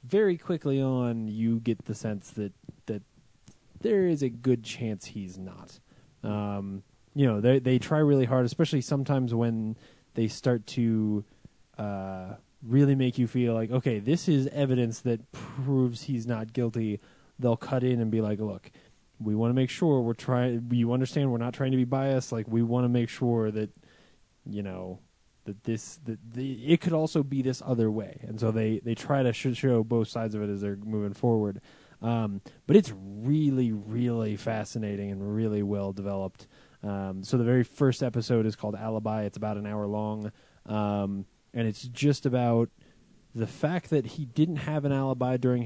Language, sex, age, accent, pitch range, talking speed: English, male, 20-39, American, 110-135 Hz, 185 wpm